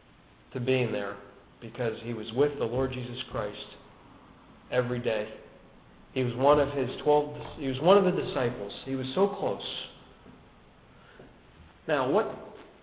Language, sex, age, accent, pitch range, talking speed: English, male, 50-69, American, 115-165 Hz, 140 wpm